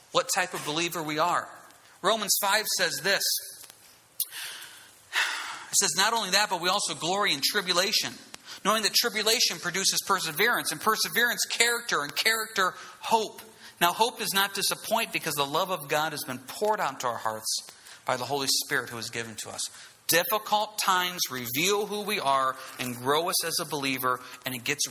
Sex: male